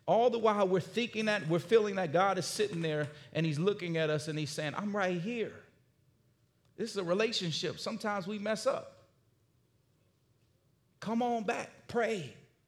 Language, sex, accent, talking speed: English, male, American, 170 wpm